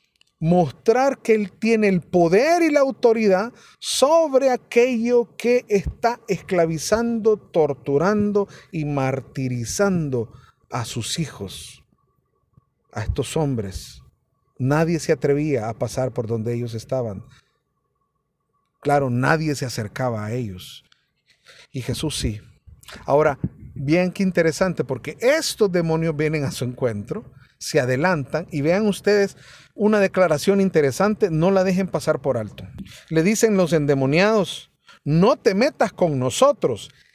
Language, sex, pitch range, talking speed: Spanish, male, 135-215 Hz, 120 wpm